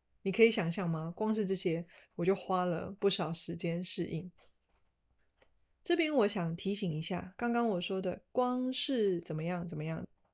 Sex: female